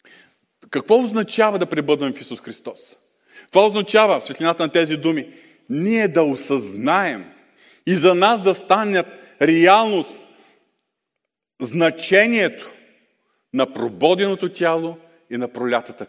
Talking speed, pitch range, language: 110 wpm, 135-185 Hz, Bulgarian